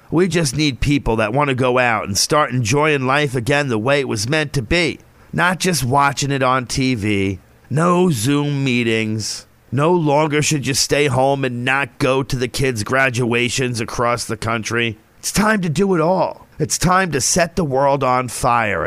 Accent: American